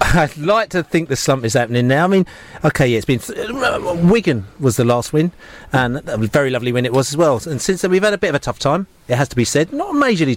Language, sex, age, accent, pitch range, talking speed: English, male, 40-59, British, 125-155 Hz, 295 wpm